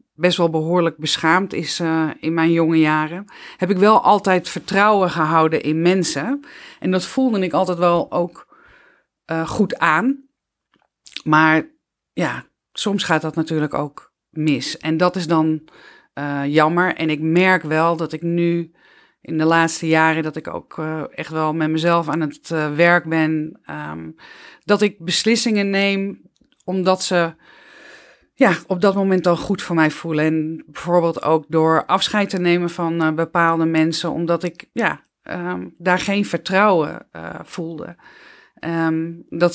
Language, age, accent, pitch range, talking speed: Dutch, 40-59, Dutch, 160-185 Hz, 155 wpm